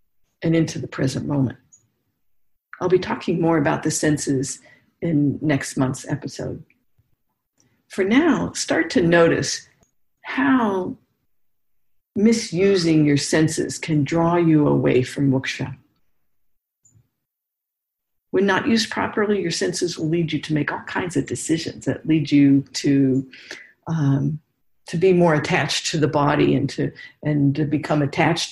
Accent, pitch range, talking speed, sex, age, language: American, 145-180 Hz, 135 wpm, female, 50-69, English